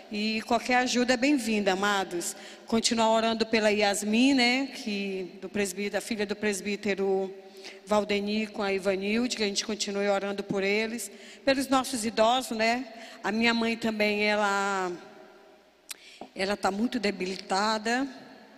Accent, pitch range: Brazilian, 215-270 Hz